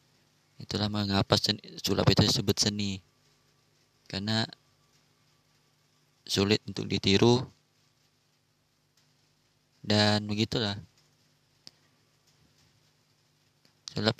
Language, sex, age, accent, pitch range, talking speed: Indonesian, male, 20-39, native, 105-140 Hz, 55 wpm